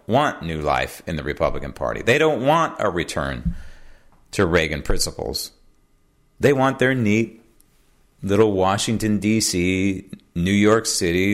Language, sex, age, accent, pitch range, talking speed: English, male, 40-59, American, 95-125 Hz, 130 wpm